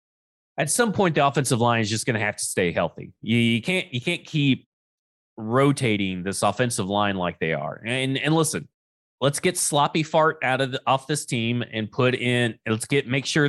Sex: male